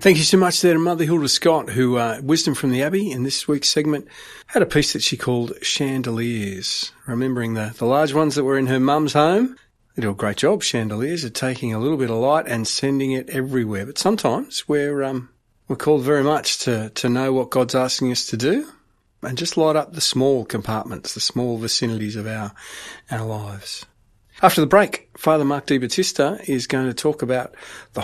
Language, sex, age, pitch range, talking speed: English, male, 40-59, 115-145 Hz, 210 wpm